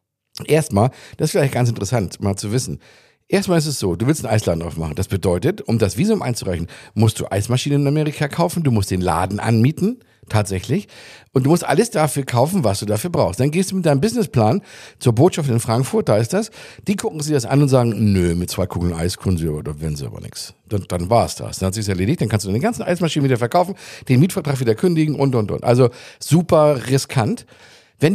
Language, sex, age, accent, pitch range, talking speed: German, male, 50-69, German, 105-160 Hz, 225 wpm